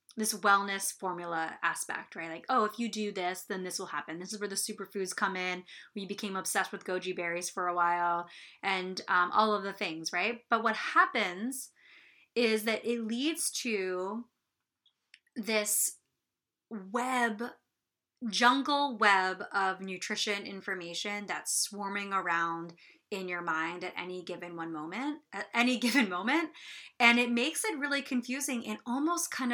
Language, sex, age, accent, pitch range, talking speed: English, female, 20-39, American, 185-240 Hz, 155 wpm